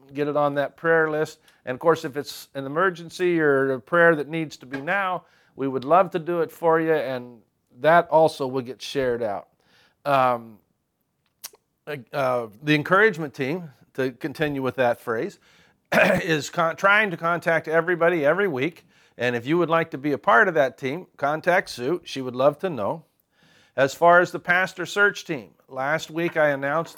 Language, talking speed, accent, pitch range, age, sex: English, 185 wpm, American, 130-160 Hz, 50-69, male